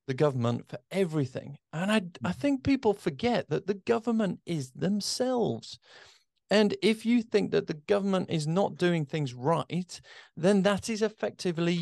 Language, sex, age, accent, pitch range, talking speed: English, male, 40-59, British, 125-170 Hz, 155 wpm